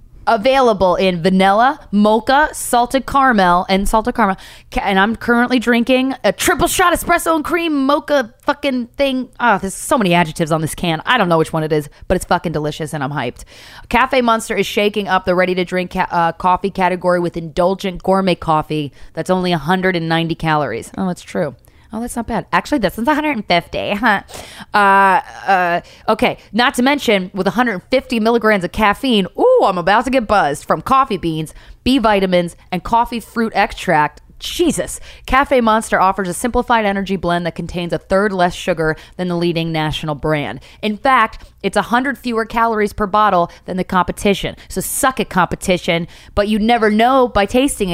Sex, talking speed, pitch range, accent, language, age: female, 180 wpm, 175-240 Hz, American, English, 20-39